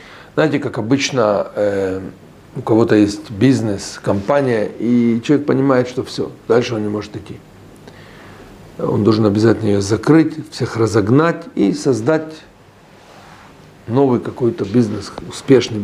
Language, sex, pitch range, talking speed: Russian, male, 110-145 Hz, 120 wpm